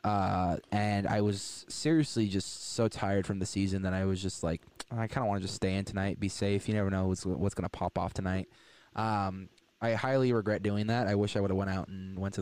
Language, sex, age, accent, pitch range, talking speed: English, male, 20-39, American, 95-115 Hz, 250 wpm